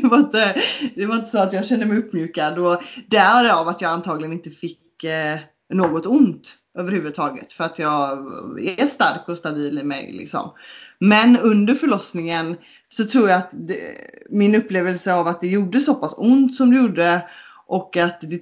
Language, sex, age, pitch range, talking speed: Swedish, female, 20-39, 165-215 Hz, 180 wpm